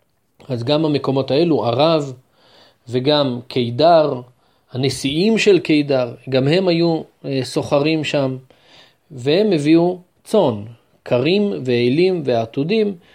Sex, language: male, Hebrew